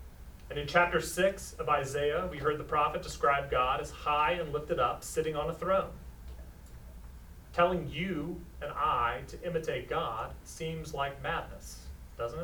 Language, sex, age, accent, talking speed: English, male, 30-49, American, 155 wpm